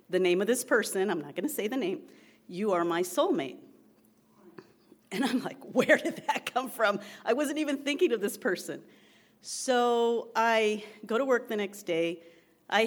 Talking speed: 180 wpm